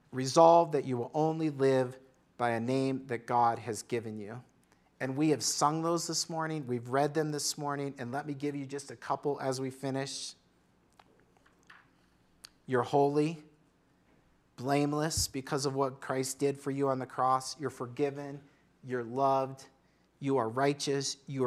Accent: American